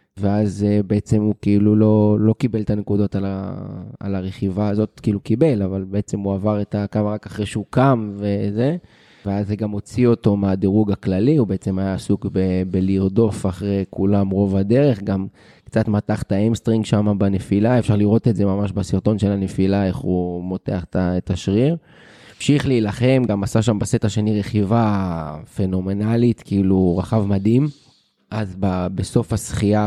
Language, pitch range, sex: Hebrew, 95-110 Hz, male